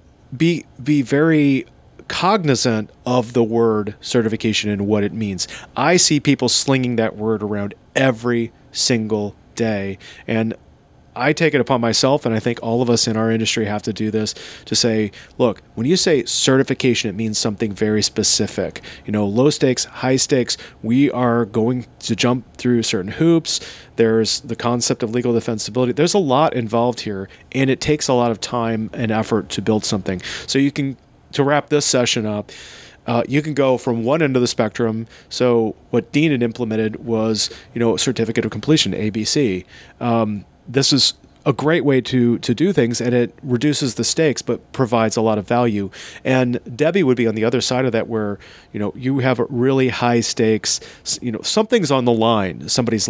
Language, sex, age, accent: English, male, 30-49, American